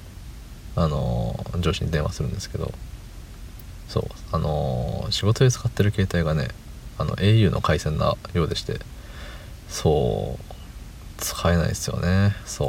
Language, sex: Japanese, male